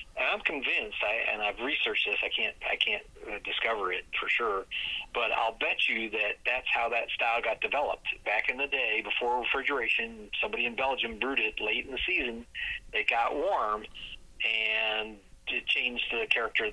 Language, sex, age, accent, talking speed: English, male, 50-69, American, 185 wpm